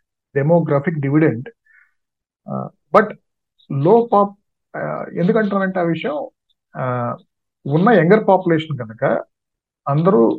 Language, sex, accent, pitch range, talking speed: Telugu, male, native, 140-175 Hz, 75 wpm